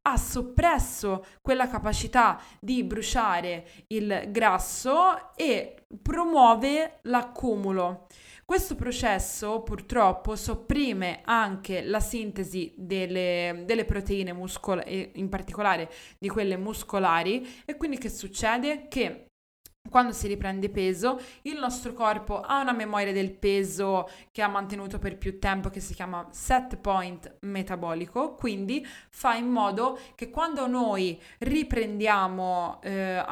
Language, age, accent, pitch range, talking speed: Italian, 20-39, native, 195-255 Hz, 115 wpm